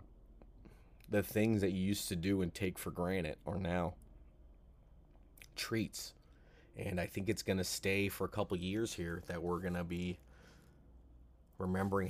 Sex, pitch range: male, 90-110 Hz